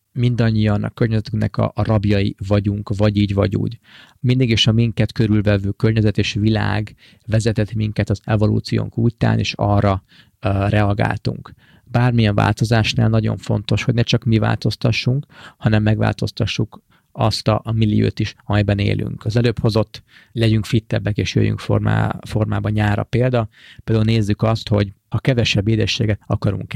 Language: Hungarian